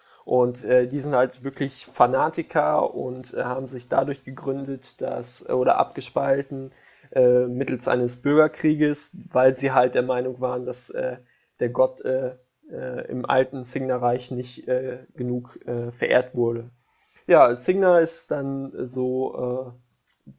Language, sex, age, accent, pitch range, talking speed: German, male, 20-39, German, 125-140 Hz, 140 wpm